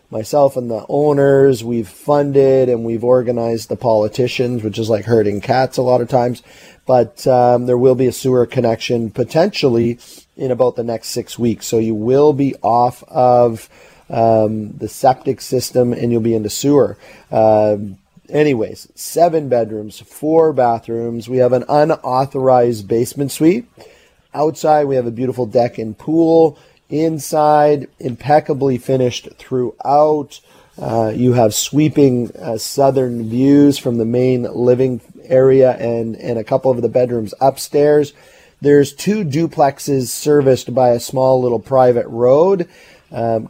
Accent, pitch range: American, 120-145 Hz